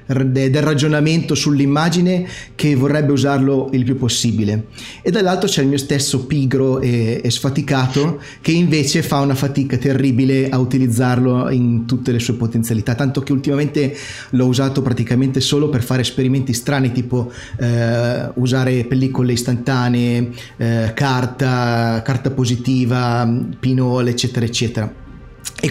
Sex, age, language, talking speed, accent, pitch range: male, 30-49, Italian, 130 wpm, native, 120-140 Hz